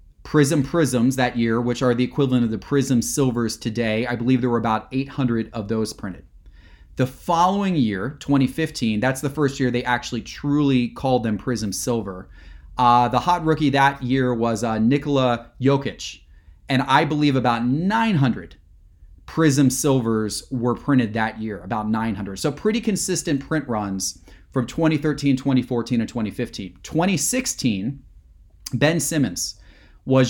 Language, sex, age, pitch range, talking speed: English, male, 30-49, 110-145 Hz, 145 wpm